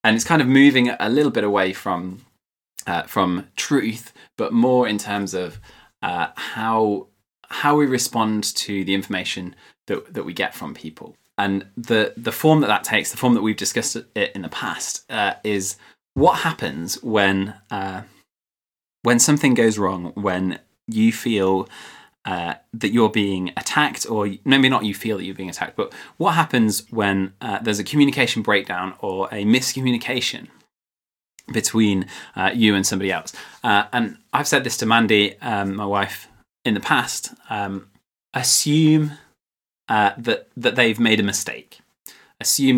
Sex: male